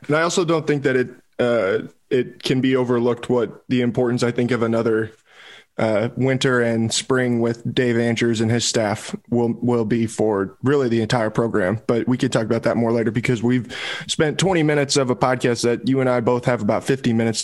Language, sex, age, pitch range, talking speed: English, male, 20-39, 115-125 Hz, 215 wpm